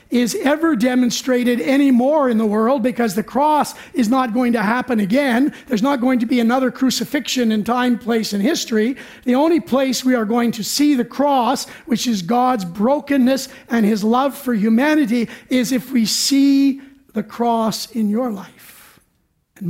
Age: 50-69